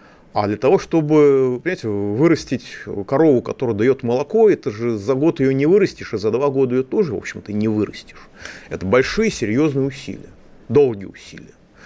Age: 30-49